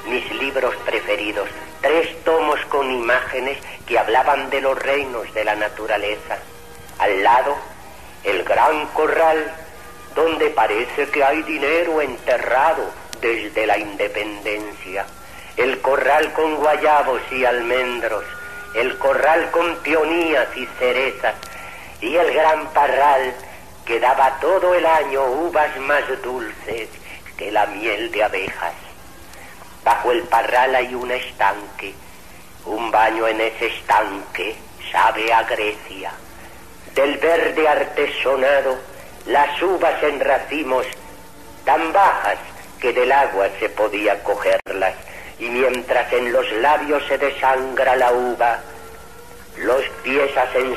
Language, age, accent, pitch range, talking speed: Spanish, 50-69, Spanish, 115-165 Hz, 115 wpm